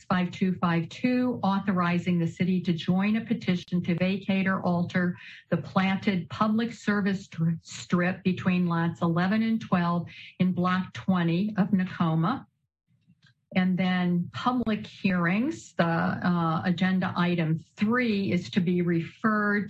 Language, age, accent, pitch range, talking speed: English, 50-69, American, 170-200 Hz, 120 wpm